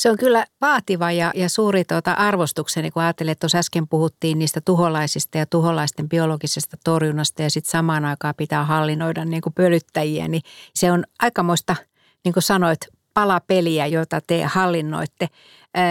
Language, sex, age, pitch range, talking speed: Finnish, female, 60-79, 155-180 Hz, 145 wpm